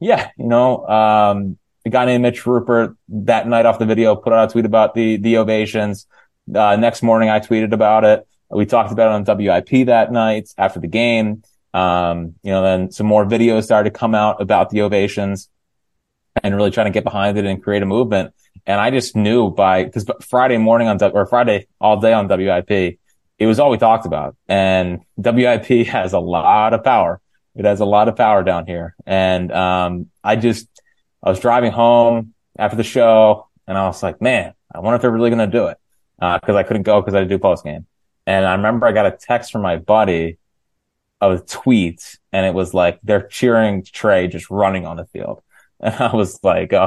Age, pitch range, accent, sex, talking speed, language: 20-39, 95-115 Hz, American, male, 215 wpm, English